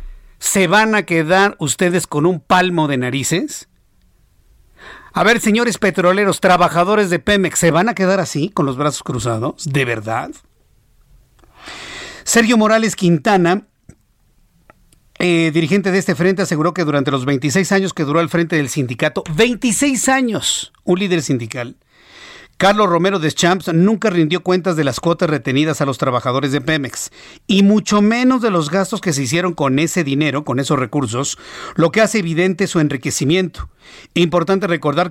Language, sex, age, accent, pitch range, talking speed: Spanish, male, 50-69, Mexican, 150-195 Hz, 155 wpm